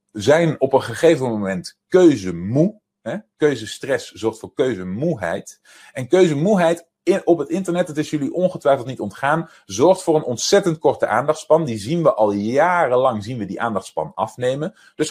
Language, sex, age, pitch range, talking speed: Dutch, male, 30-49, 115-175 Hz, 160 wpm